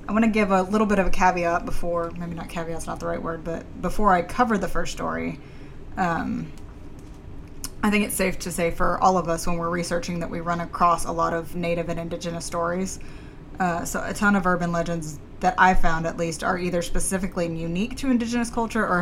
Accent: American